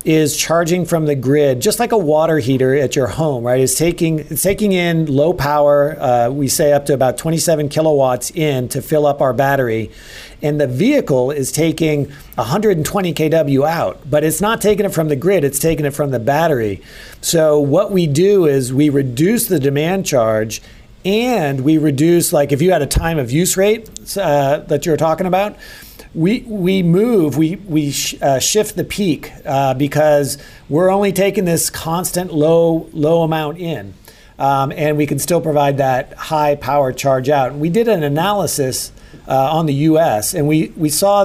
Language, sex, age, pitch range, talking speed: English, male, 40-59, 140-165 Hz, 185 wpm